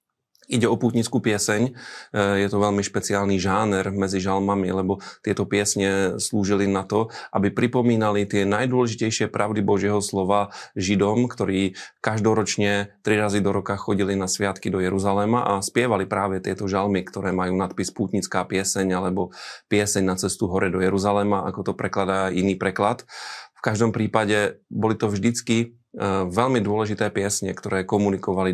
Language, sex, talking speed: Slovak, male, 145 wpm